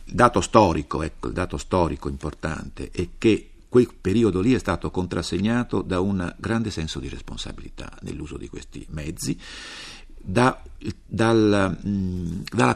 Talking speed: 120 wpm